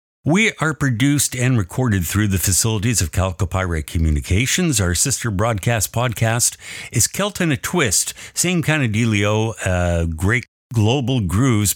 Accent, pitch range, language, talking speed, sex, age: American, 90-120 Hz, English, 145 wpm, male, 60-79